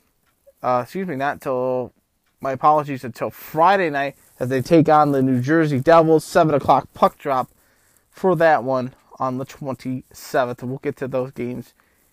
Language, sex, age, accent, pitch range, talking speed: English, male, 20-39, American, 130-160 Hz, 165 wpm